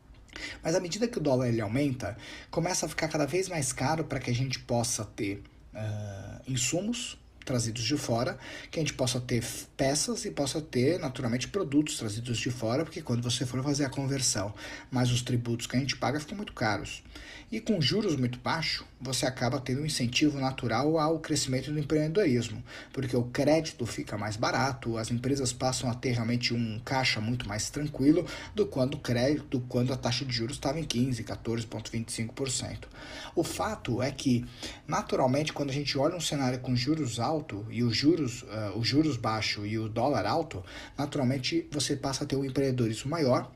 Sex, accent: male, Brazilian